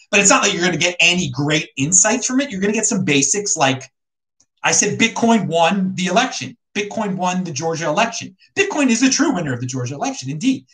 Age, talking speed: 30-49, 230 wpm